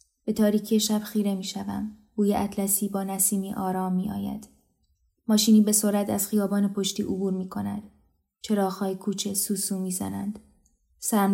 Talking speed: 125 wpm